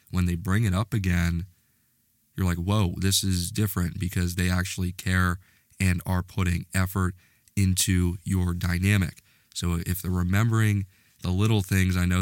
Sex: male